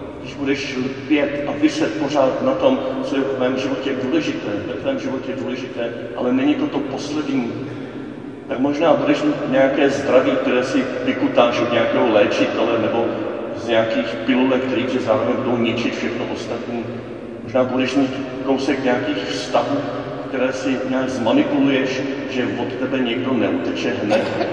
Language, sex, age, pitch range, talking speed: Czech, male, 40-59, 120-140 Hz, 150 wpm